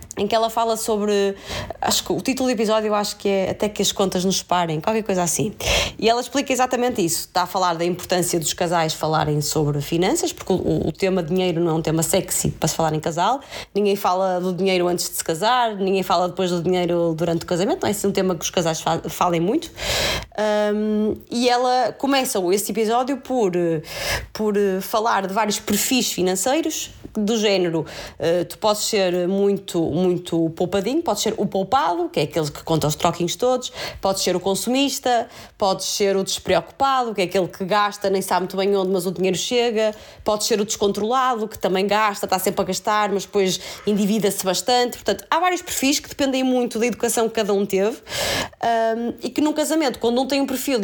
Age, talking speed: 20-39, 205 wpm